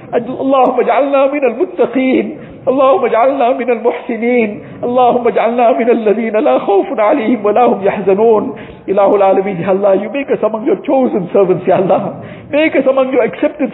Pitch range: 200-295 Hz